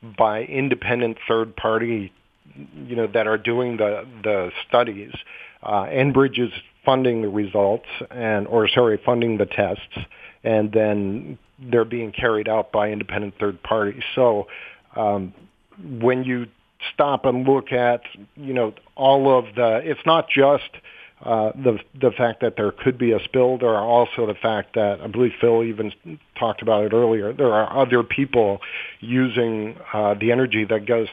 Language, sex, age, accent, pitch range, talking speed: English, male, 50-69, American, 105-120 Hz, 160 wpm